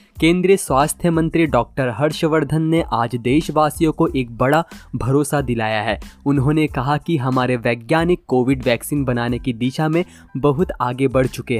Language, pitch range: Hindi, 130-160 Hz